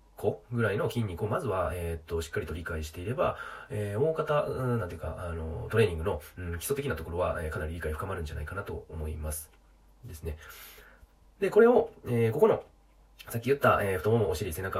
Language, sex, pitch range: Japanese, male, 80-120 Hz